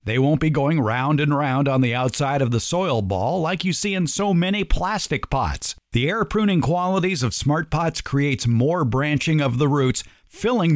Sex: male